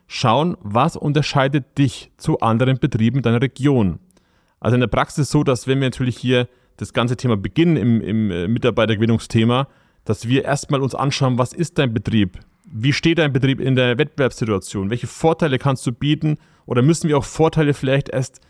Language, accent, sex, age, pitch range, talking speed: German, German, male, 30-49, 115-150 Hz, 175 wpm